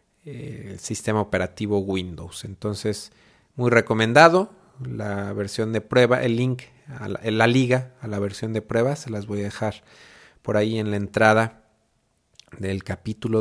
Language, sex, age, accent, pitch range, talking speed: Spanish, male, 40-59, Mexican, 105-130 Hz, 150 wpm